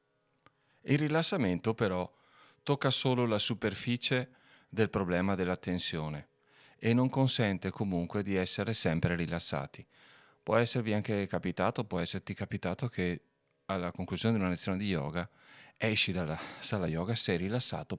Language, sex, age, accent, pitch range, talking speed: Italian, male, 40-59, native, 90-115 Hz, 135 wpm